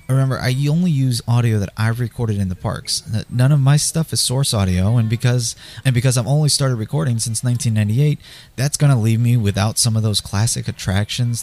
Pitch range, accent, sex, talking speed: 105-135 Hz, American, male, 205 wpm